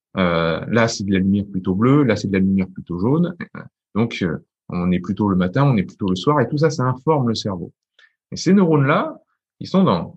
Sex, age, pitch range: male, 30-49, 100-140 Hz